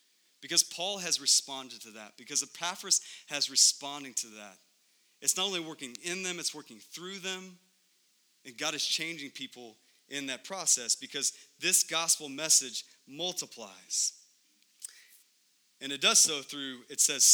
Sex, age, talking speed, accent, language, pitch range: male, 30-49, 145 wpm, American, English, 125-170 Hz